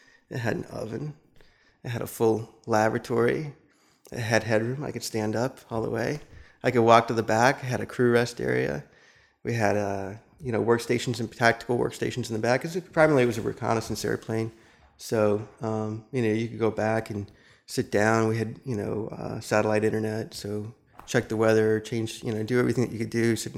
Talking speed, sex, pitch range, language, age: 210 wpm, male, 110-125 Hz, English, 30-49